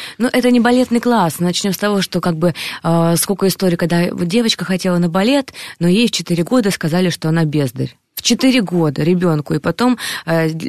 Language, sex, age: Russian, female, 20-39